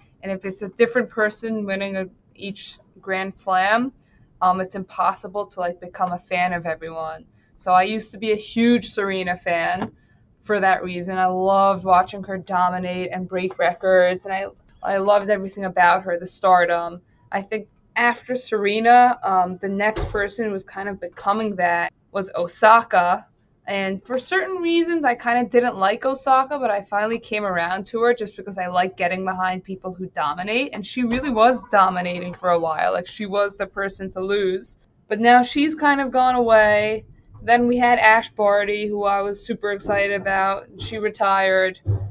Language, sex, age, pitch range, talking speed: English, female, 20-39, 185-220 Hz, 180 wpm